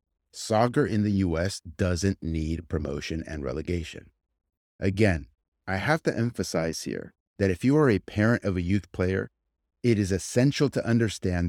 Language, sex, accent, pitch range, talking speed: English, male, American, 90-125 Hz, 155 wpm